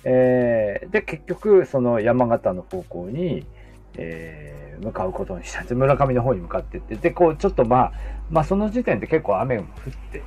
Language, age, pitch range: Japanese, 40-59, 110-175 Hz